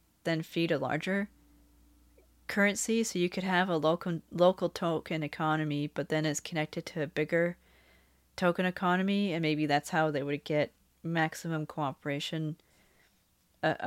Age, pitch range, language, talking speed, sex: 30-49, 155-185 Hz, English, 145 wpm, female